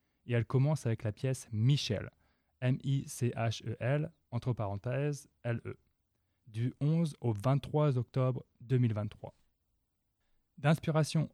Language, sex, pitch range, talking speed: French, male, 110-140 Hz, 95 wpm